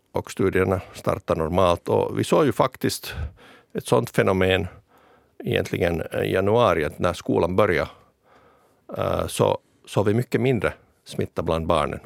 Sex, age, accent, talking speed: male, 60-79, Finnish, 135 wpm